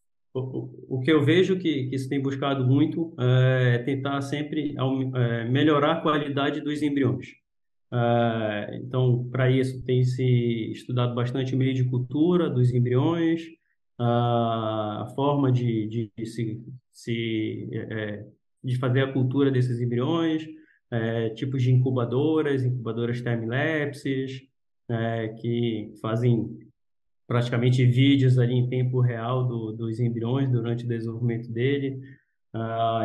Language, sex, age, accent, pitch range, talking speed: Portuguese, male, 20-39, Brazilian, 115-135 Hz, 125 wpm